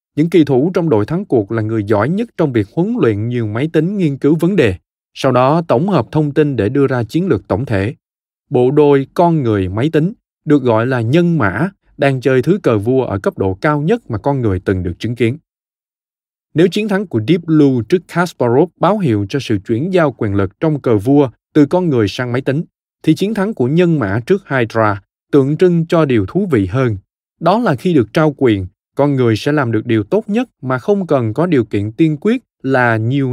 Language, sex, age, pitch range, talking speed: Vietnamese, male, 20-39, 110-160 Hz, 230 wpm